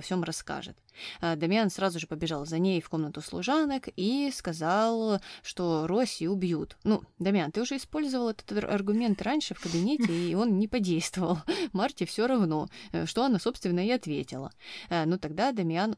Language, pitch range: Russian, 165-220 Hz